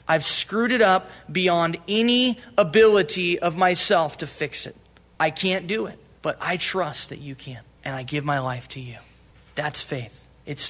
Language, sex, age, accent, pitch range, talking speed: English, male, 20-39, American, 160-200 Hz, 180 wpm